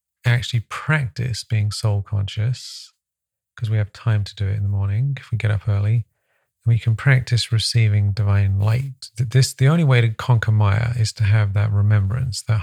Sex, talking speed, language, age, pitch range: male, 185 wpm, English, 40-59, 105-125 Hz